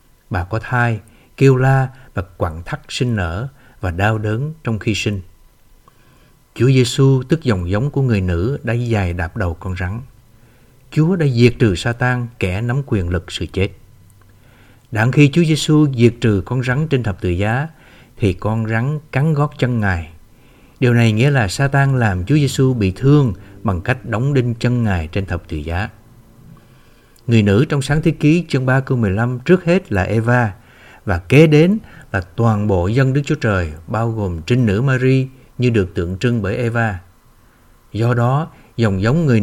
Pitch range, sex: 105-130 Hz, male